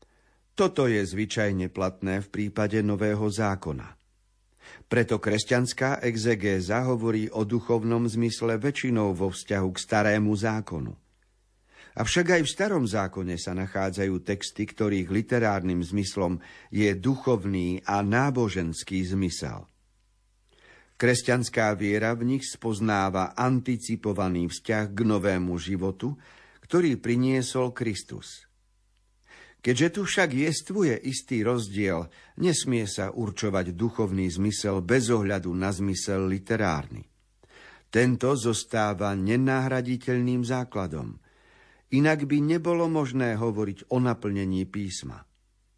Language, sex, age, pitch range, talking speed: Slovak, male, 50-69, 100-125 Hz, 100 wpm